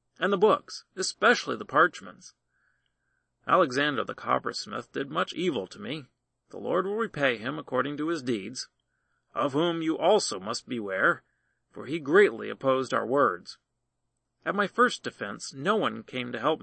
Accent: American